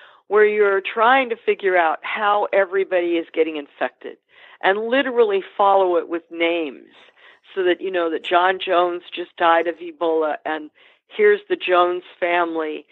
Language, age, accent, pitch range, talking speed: English, 50-69, American, 170-220 Hz, 155 wpm